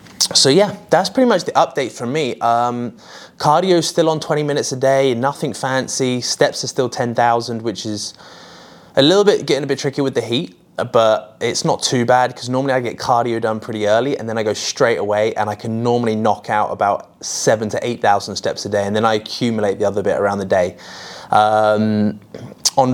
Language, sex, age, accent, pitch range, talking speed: English, male, 20-39, British, 110-135 Hz, 205 wpm